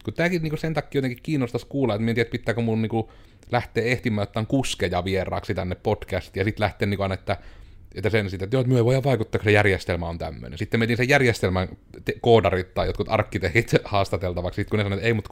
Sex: male